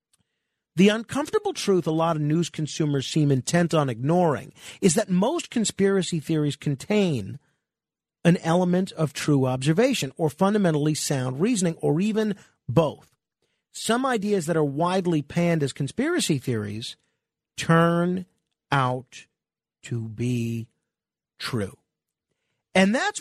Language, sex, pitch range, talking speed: English, male, 150-200 Hz, 120 wpm